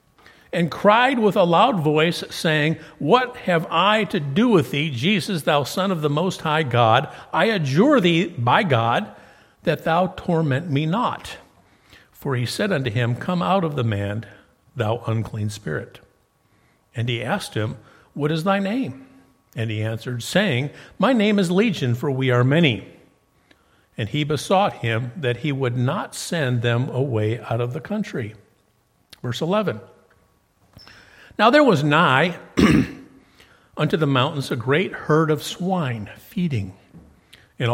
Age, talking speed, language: 60-79, 155 wpm, English